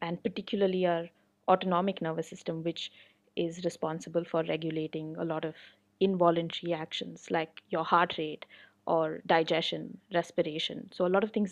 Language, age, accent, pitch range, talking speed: English, 20-39, Indian, 165-185 Hz, 145 wpm